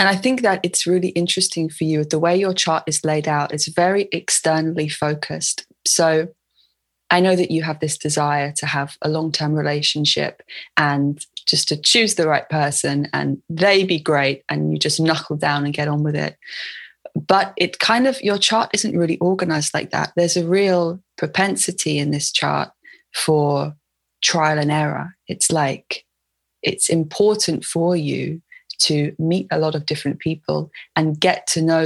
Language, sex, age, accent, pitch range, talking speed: English, female, 20-39, British, 150-175 Hz, 175 wpm